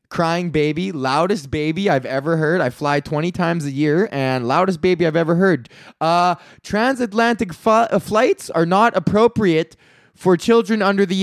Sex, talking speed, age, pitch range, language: male, 165 wpm, 20-39, 175-235 Hz, English